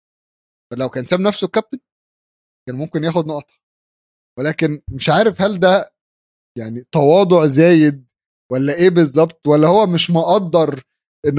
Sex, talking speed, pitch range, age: male, 130 wpm, 135-185 Hz, 20-39